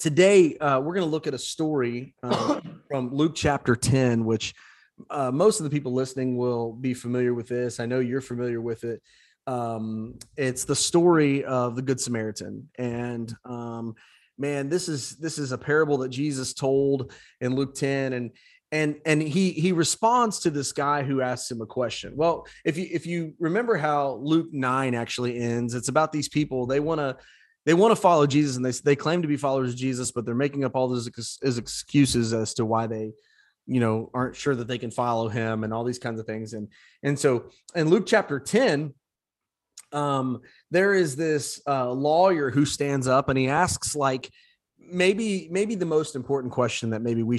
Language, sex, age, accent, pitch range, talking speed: English, male, 30-49, American, 120-150 Hz, 200 wpm